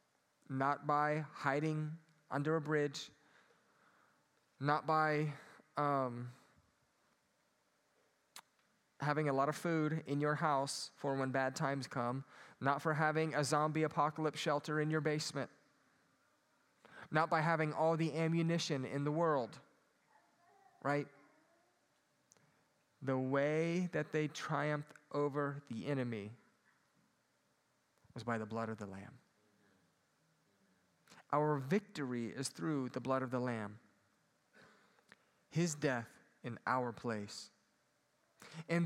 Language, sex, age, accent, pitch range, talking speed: English, male, 20-39, American, 135-165 Hz, 110 wpm